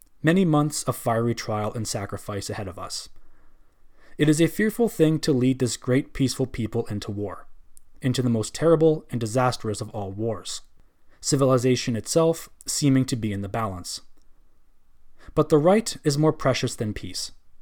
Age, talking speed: 20-39, 165 wpm